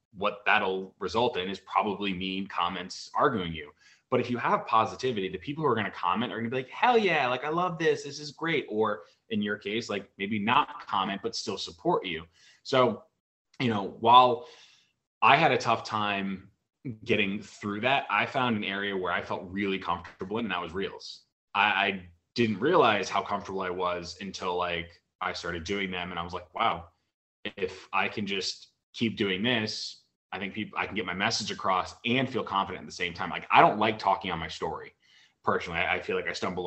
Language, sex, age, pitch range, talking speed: English, male, 20-39, 90-120 Hz, 210 wpm